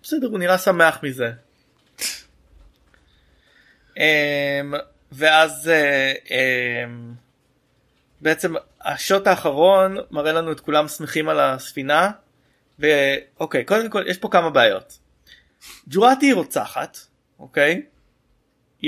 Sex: male